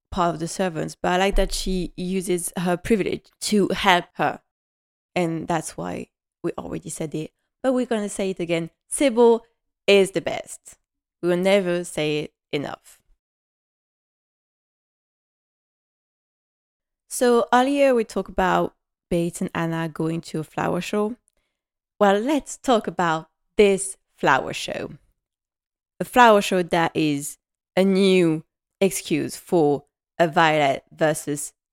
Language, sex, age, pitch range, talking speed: English, female, 20-39, 165-230 Hz, 130 wpm